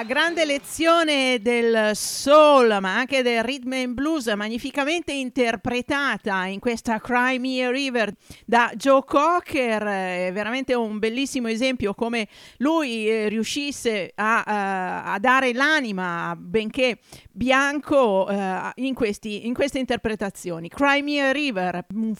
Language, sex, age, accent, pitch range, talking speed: Italian, female, 40-59, native, 210-270 Hz, 115 wpm